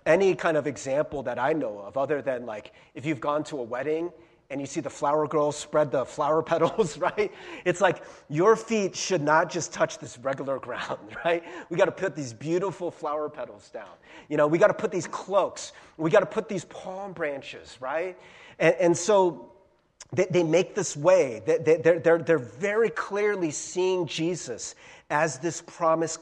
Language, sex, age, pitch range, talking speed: English, male, 30-49, 165-240 Hz, 195 wpm